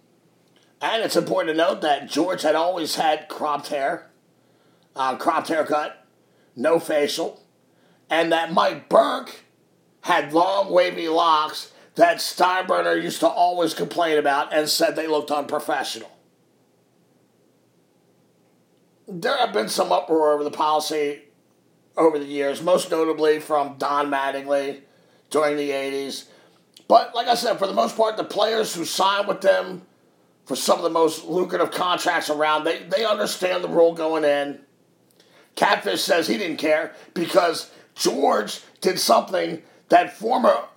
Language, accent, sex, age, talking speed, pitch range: English, American, male, 50-69, 140 wpm, 150-180 Hz